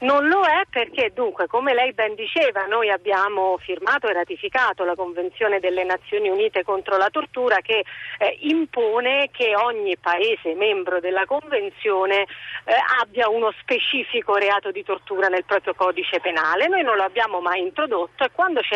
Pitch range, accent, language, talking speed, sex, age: 185-305 Hz, native, Italian, 165 wpm, female, 40-59